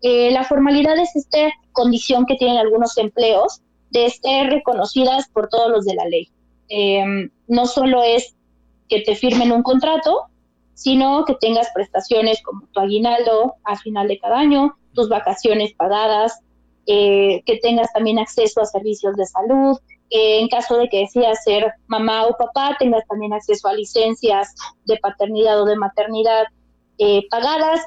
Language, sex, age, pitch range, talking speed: Spanish, female, 20-39, 205-250 Hz, 160 wpm